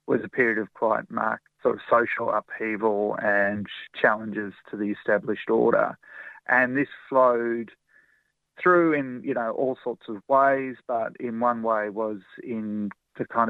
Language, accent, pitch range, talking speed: English, Australian, 110-125 Hz, 155 wpm